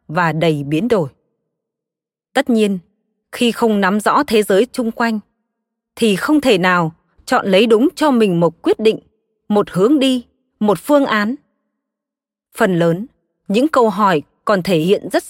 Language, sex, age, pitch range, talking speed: Vietnamese, female, 20-39, 200-270 Hz, 160 wpm